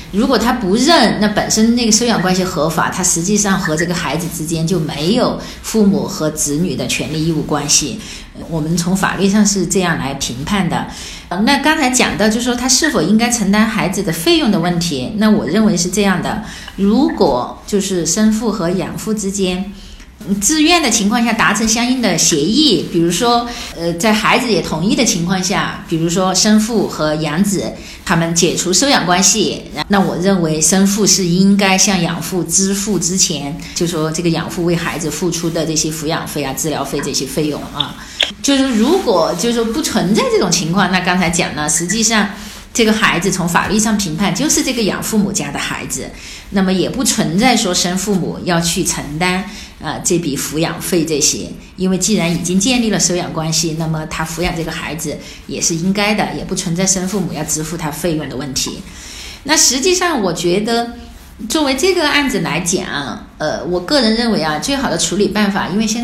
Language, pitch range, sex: Chinese, 170-215 Hz, female